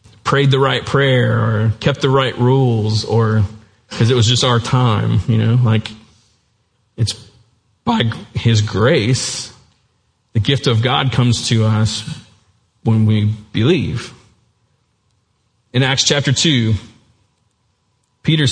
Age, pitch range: 40-59, 110-135 Hz